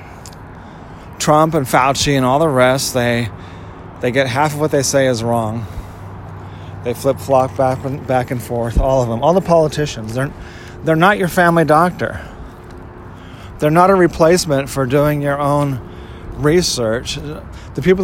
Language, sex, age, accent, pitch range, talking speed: English, male, 30-49, American, 115-155 Hz, 155 wpm